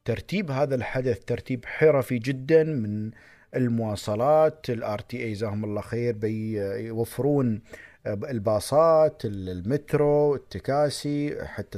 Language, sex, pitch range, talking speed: Arabic, male, 115-150 Hz, 90 wpm